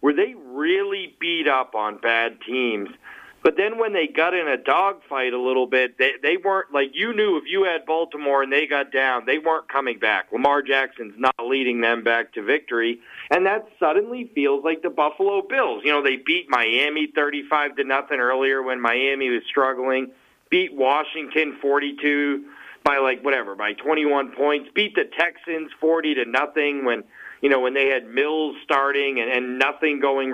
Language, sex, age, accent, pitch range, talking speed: English, male, 40-59, American, 135-205 Hz, 180 wpm